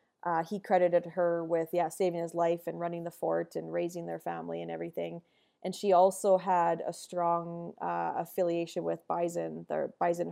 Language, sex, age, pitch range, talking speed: English, female, 20-39, 170-190 Hz, 180 wpm